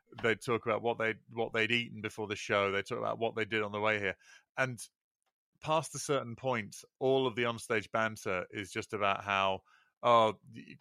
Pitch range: 105-130 Hz